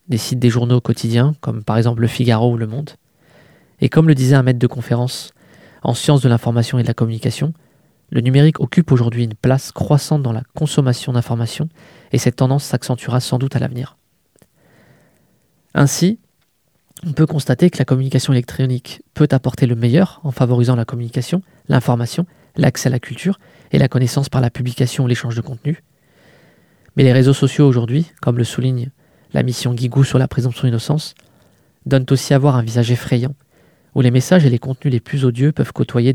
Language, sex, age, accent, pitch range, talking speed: French, male, 20-39, French, 125-145 Hz, 185 wpm